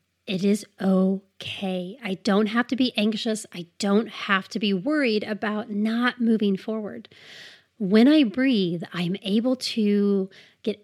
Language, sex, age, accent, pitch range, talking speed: English, female, 30-49, American, 195-245 Hz, 145 wpm